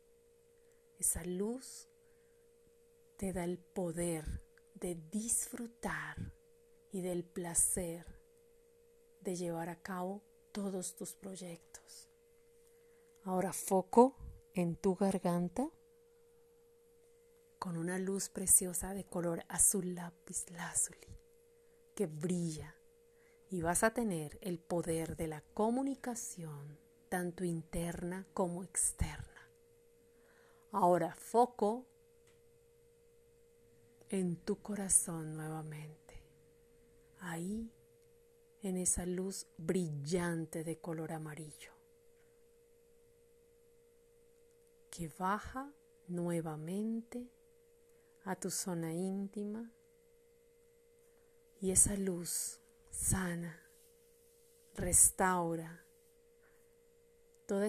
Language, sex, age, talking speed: Spanish, female, 40-59, 75 wpm